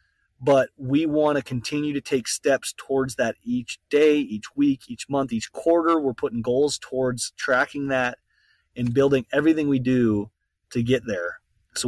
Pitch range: 110-140 Hz